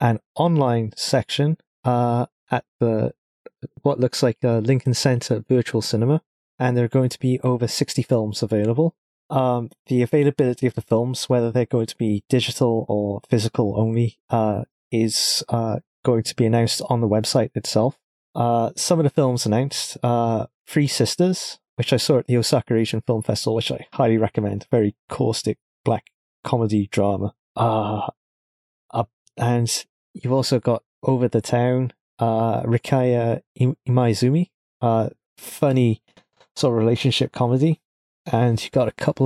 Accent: British